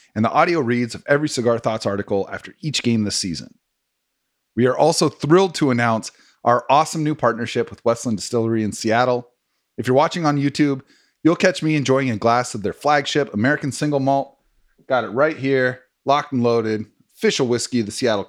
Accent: American